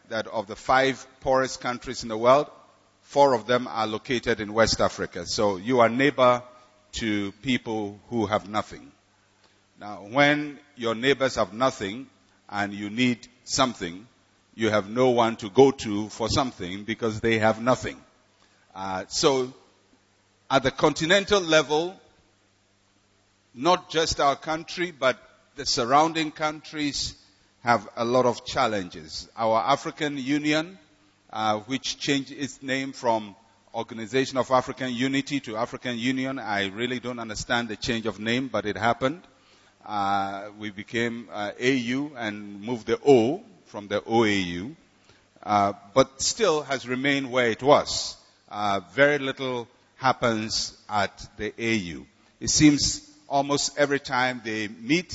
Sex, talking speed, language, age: male, 140 wpm, English, 50-69